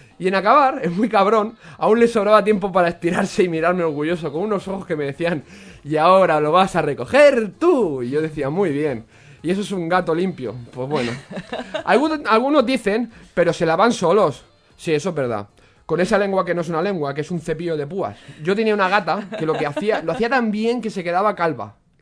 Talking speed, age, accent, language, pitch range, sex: 220 wpm, 20-39, Spanish, Spanish, 155-220 Hz, male